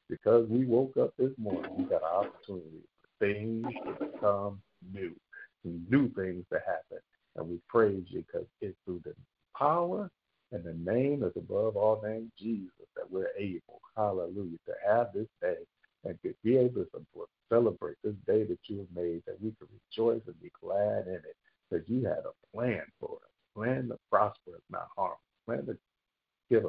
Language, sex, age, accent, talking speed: English, male, 50-69, American, 180 wpm